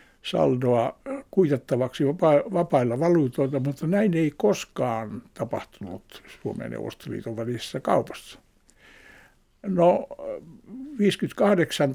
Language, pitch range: Finnish, 130-170 Hz